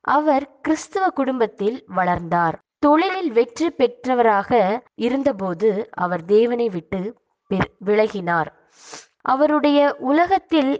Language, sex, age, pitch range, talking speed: Tamil, female, 20-39, 200-275 Hz, 80 wpm